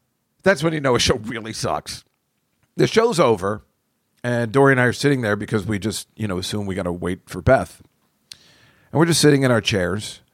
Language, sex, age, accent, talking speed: English, male, 50-69, American, 215 wpm